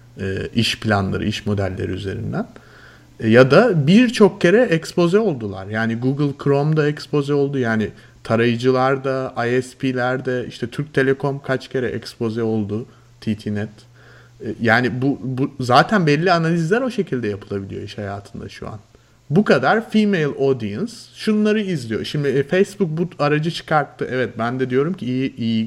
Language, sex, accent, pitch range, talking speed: Turkish, male, native, 120-155 Hz, 135 wpm